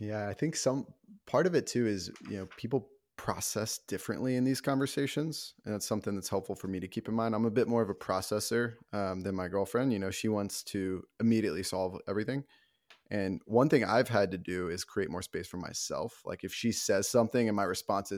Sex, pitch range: male, 95-120 Hz